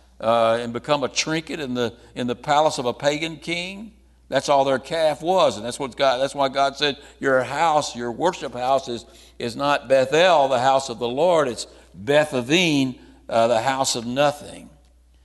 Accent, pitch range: American, 120-155 Hz